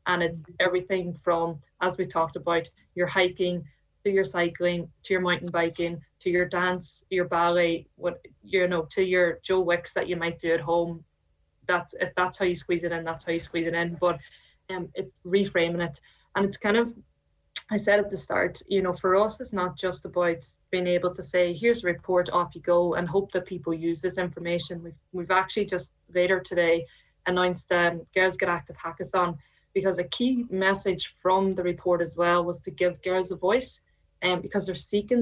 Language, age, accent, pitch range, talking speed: English, 20-39, Irish, 170-190 Hz, 205 wpm